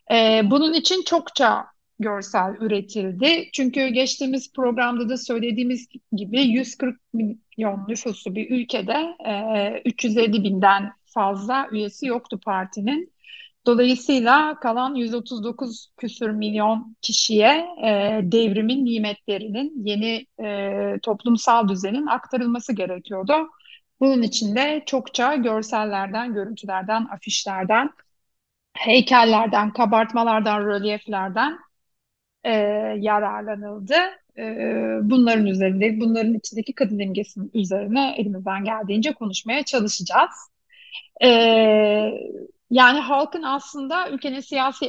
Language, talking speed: Turkish, 85 wpm